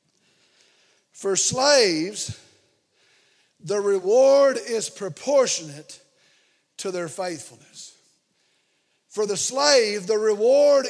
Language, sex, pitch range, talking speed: English, male, 215-275 Hz, 75 wpm